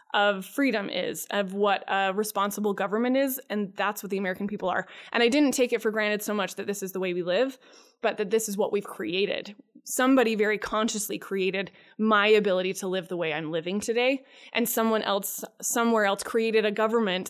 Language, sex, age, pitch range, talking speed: English, female, 20-39, 195-235 Hz, 210 wpm